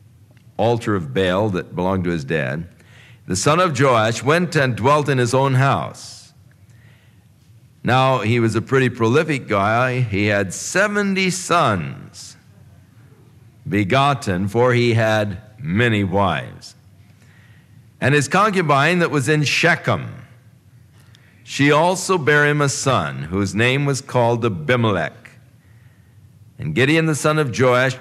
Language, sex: English, male